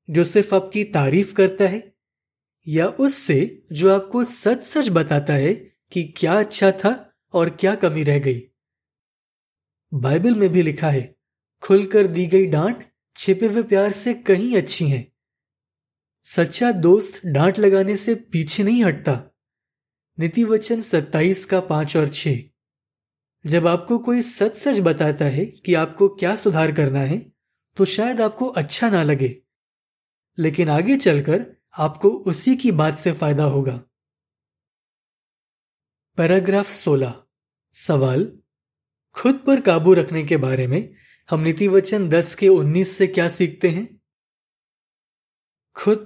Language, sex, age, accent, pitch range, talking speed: Hindi, male, 20-39, native, 155-205 Hz, 135 wpm